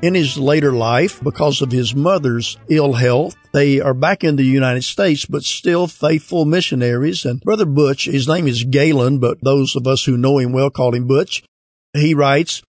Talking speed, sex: 190 wpm, male